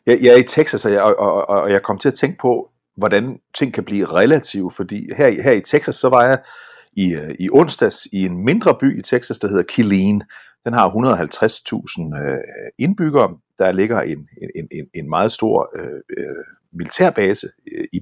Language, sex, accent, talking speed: Danish, male, native, 185 wpm